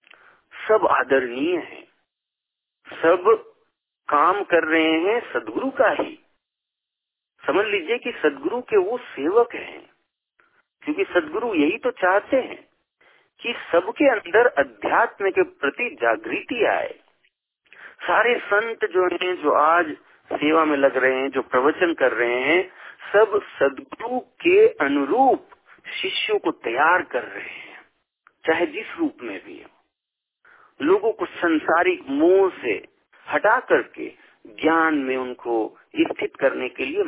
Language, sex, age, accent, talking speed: Hindi, male, 50-69, native, 125 wpm